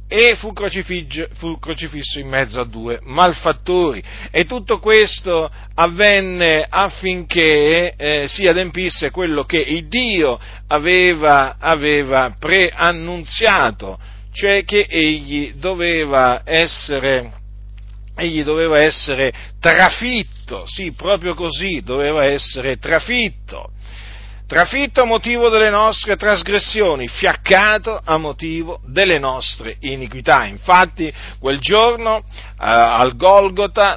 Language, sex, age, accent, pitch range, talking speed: Italian, male, 50-69, native, 125-185 Hz, 100 wpm